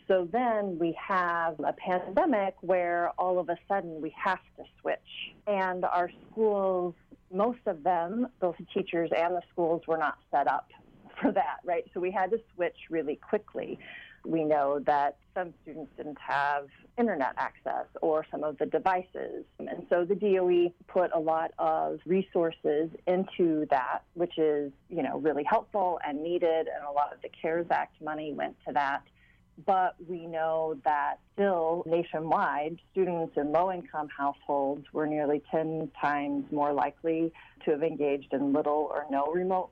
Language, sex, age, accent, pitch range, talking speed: English, female, 40-59, American, 150-180 Hz, 165 wpm